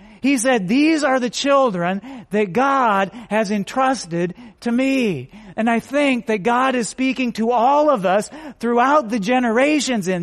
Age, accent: 40-59, American